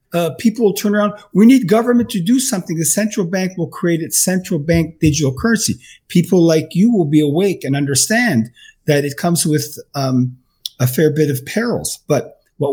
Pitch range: 175-240 Hz